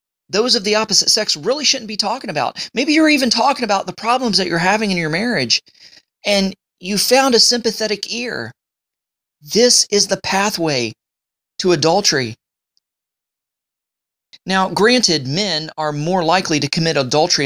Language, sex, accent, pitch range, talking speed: English, male, American, 150-200 Hz, 150 wpm